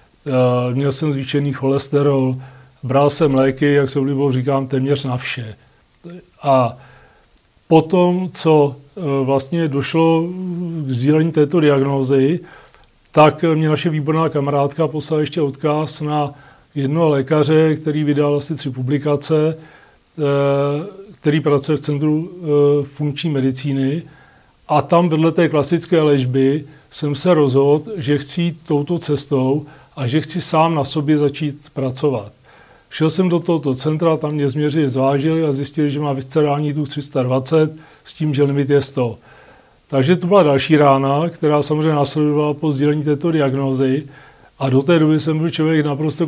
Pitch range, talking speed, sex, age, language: 135-155 Hz, 140 wpm, male, 40-59, Czech